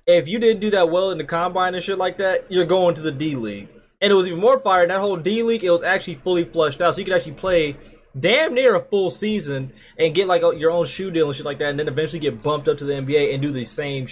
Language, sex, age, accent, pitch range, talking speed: English, male, 20-39, American, 145-185 Hz, 285 wpm